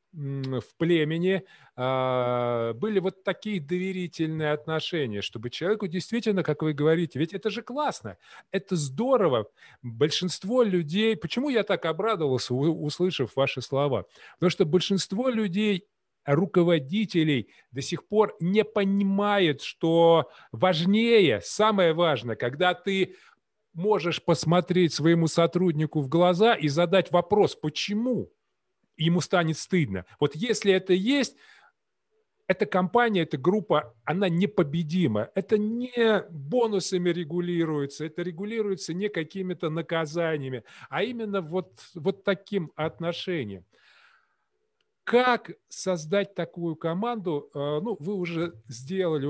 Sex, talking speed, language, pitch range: male, 110 wpm, Russian, 155-200 Hz